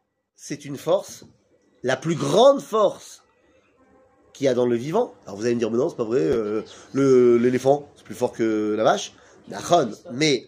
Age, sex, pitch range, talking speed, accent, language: 30-49, male, 175-265 Hz, 195 wpm, French, French